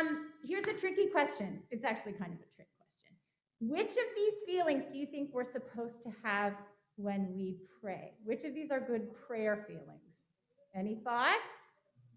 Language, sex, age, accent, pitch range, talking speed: English, female, 40-59, American, 225-335 Hz, 175 wpm